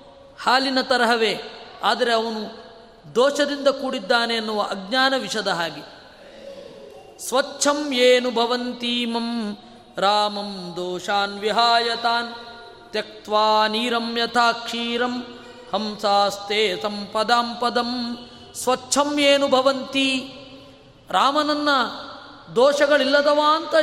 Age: 20-39